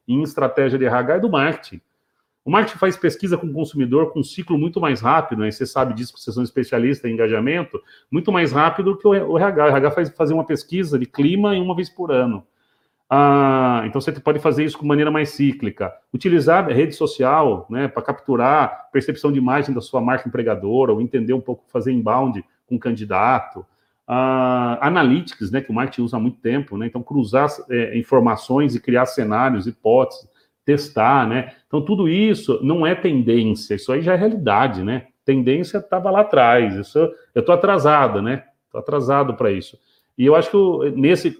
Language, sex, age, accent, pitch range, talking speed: Portuguese, male, 40-59, Brazilian, 125-160 Hz, 200 wpm